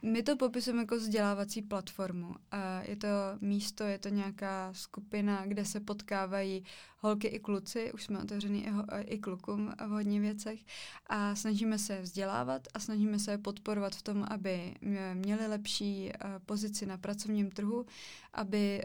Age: 20-39